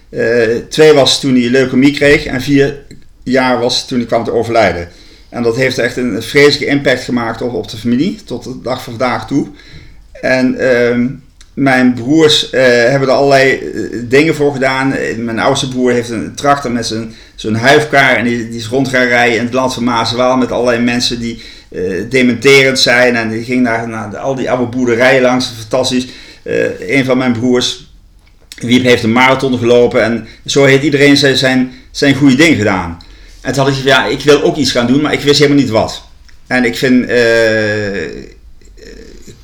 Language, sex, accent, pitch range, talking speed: English, male, Dutch, 120-140 Hz, 190 wpm